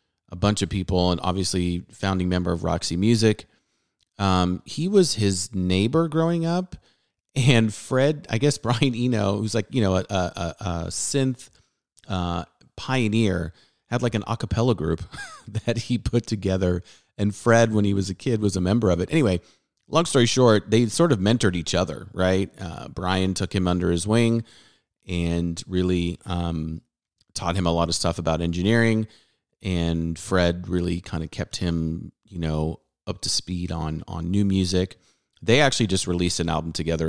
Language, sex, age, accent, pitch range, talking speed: English, male, 30-49, American, 85-110 Hz, 175 wpm